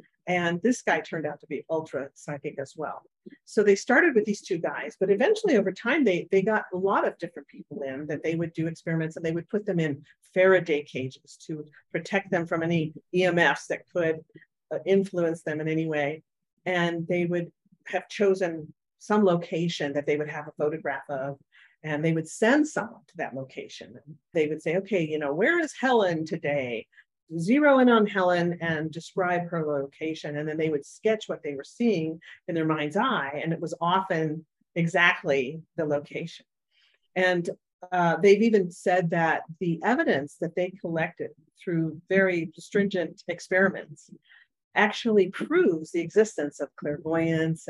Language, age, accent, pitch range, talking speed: English, 50-69, American, 155-190 Hz, 175 wpm